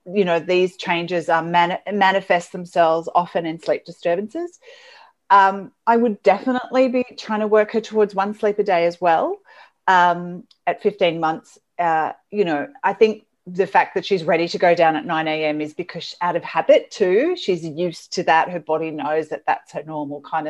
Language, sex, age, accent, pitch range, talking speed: English, female, 40-59, Australian, 155-215 Hz, 195 wpm